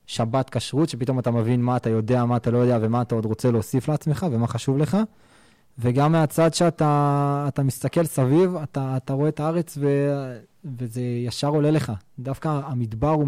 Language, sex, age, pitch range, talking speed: Hebrew, male, 20-39, 125-150 Hz, 175 wpm